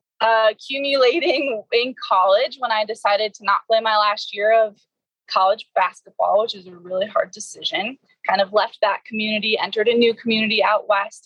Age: 20-39